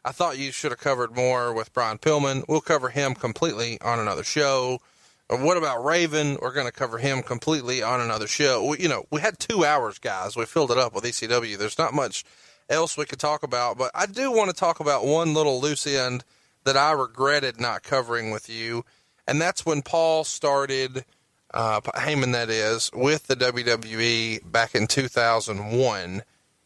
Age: 30-49